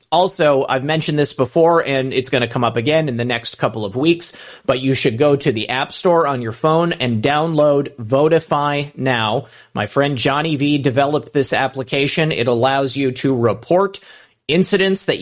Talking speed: 185 wpm